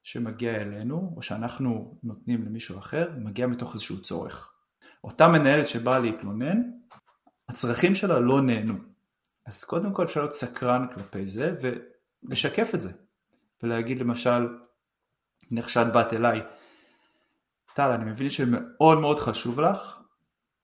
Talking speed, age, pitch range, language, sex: 120 wpm, 30-49, 115-145 Hz, Hebrew, male